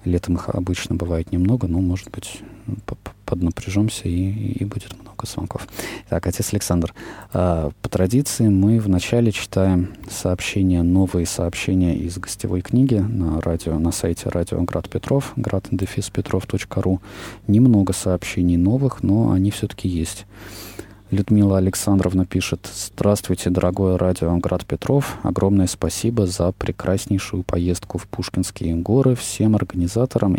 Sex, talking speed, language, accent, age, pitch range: male, 120 wpm, Russian, native, 20-39, 90-105 Hz